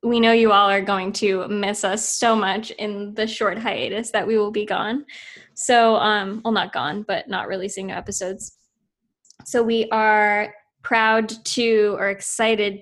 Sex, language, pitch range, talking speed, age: female, English, 195-225 Hz, 175 wpm, 10-29